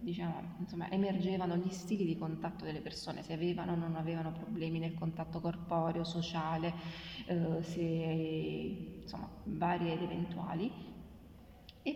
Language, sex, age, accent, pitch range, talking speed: Italian, female, 20-39, native, 175-205 Hz, 130 wpm